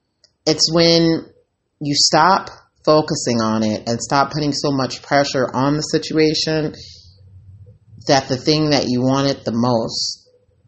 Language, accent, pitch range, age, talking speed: English, American, 115-155 Hz, 30-49, 135 wpm